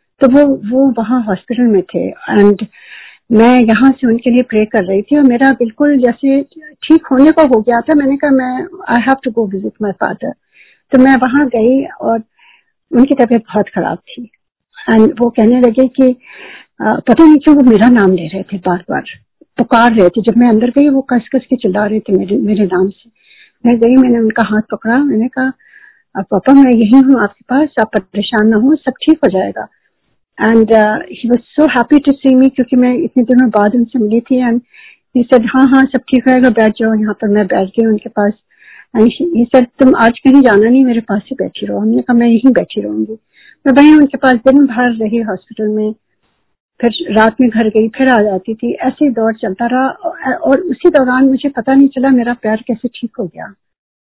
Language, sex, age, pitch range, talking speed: Hindi, female, 50-69, 220-265 Hz, 205 wpm